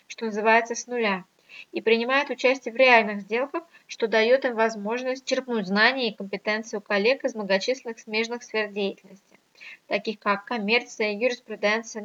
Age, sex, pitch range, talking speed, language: 20-39, female, 210-245 Hz, 145 wpm, Russian